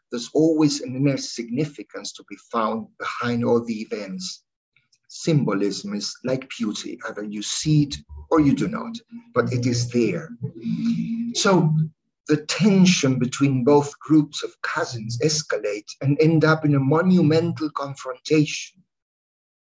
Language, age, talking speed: English, 50-69, 135 wpm